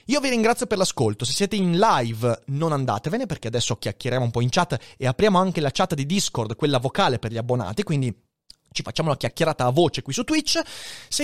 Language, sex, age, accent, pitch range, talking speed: Italian, male, 30-49, native, 125-190 Hz, 220 wpm